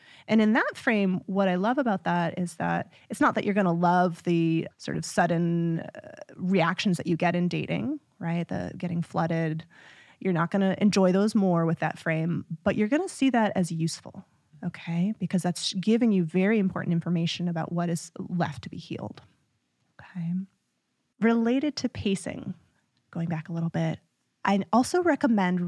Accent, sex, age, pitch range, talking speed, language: American, female, 20-39, 170-200 Hz, 180 wpm, English